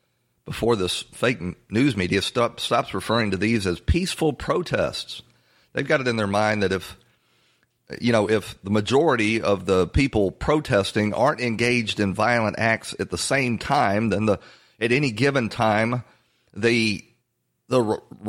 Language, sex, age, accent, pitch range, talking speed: English, male, 40-59, American, 95-120 Hz, 160 wpm